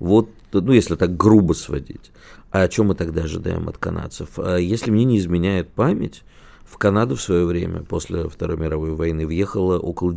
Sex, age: male, 50-69